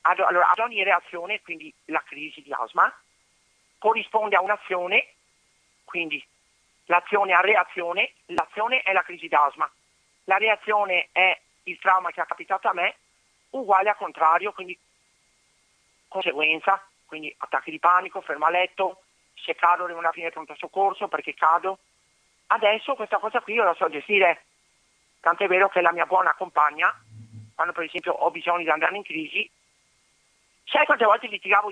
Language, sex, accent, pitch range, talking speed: Italian, male, native, 165-210 Hz, 155 wpm